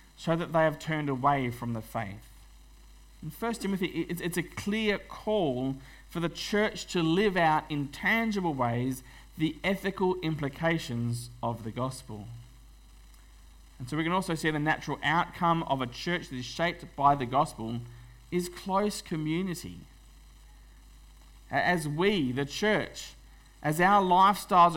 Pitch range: 130-185 Hz